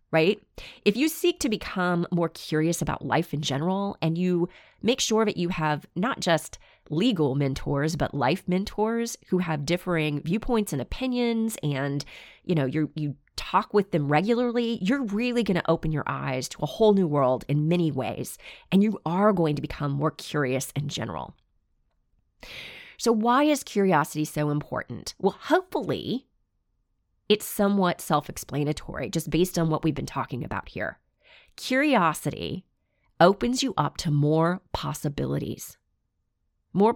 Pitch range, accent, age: 145-210 Hz, American, 30-49